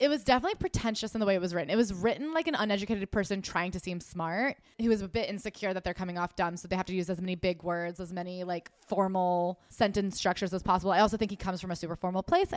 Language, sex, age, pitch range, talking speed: English, female, 20-39, 185-225 Hz, 275 wpm